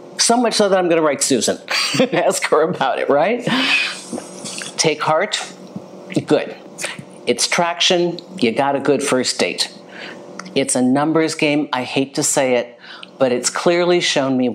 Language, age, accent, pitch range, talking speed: English, 50-69, American, 125-180 Hz, 160 wpm